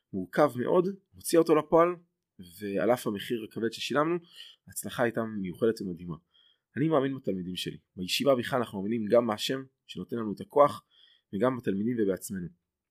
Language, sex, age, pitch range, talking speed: Hebrew, male, 20-39, 95-140 Hz, 145 wpm